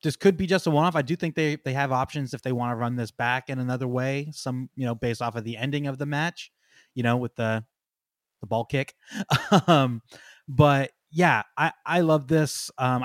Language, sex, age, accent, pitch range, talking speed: English, male, 20-39, American, 130-180 Hz, 225 wpm